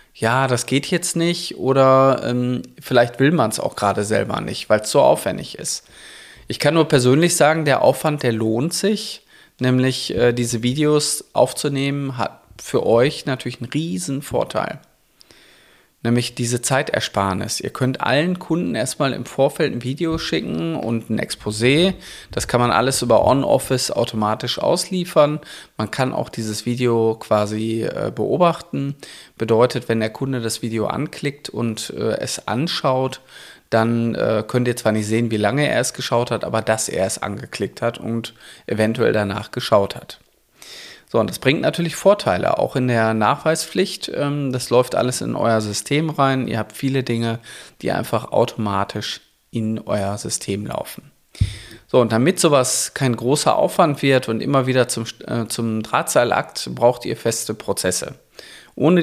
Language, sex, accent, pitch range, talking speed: German, male, German, 115-140 Hz, 160 wpm